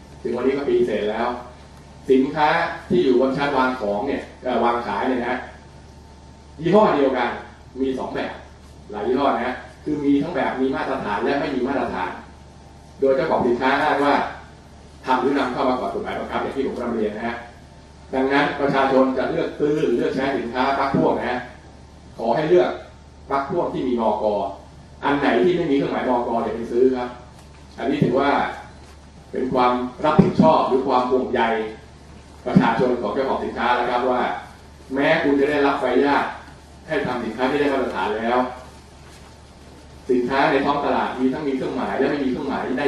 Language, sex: Thai, male